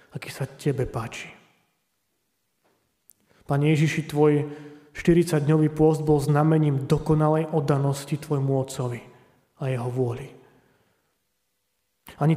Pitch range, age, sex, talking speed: 135-160 Hz, 30-49, male, 90 wpm